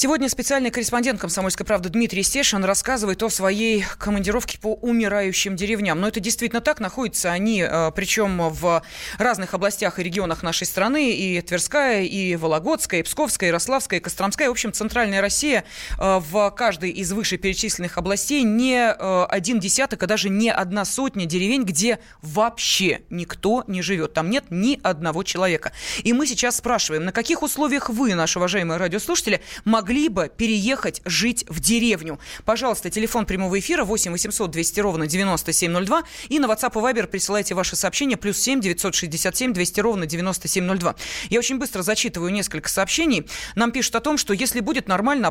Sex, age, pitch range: female, 20-39, 185-240 Hz